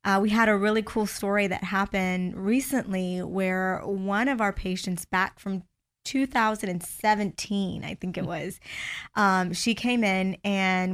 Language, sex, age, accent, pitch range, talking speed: English, female, 20-39, American, 180-195 Hz, 150 wpm